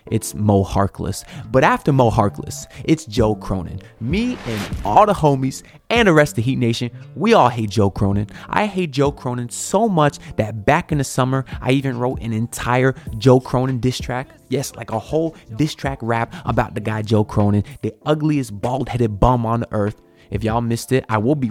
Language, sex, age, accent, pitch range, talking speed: English, male, 20-39, American, 105-145 Hz, 200 wpm